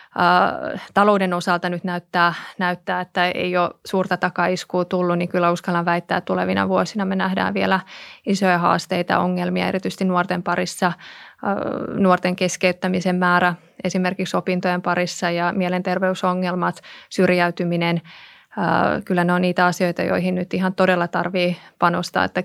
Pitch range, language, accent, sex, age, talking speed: 175-185 Hz, Finnish, native, female, 20-39, 130 wpm